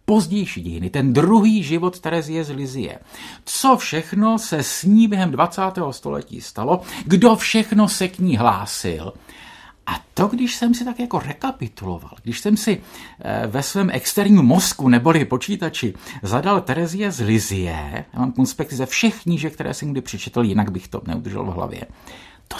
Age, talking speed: 50-69, 160 wpm